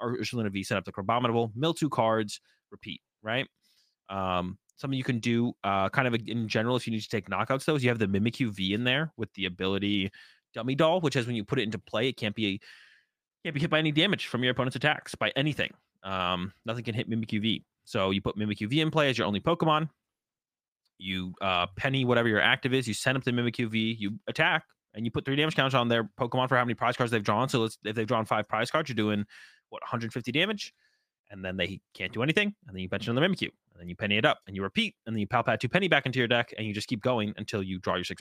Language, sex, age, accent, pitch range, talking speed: English, male, 20-39, American, 100-130 Hz, 260 wpm